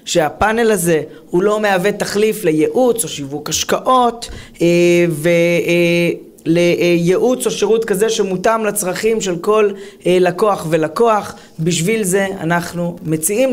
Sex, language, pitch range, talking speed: female, Hebrew, 175-225 Hz, 105 wpm